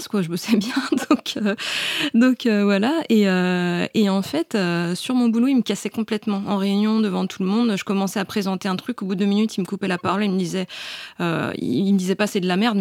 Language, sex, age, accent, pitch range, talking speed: French, female, 20-39, French, 180-220 Hz, 265 wpm